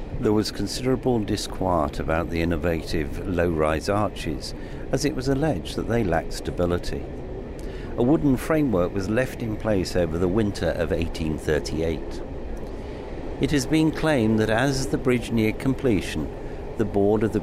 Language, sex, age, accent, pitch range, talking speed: English, male, 60-79, British, 85-120 Hz, 150 wpm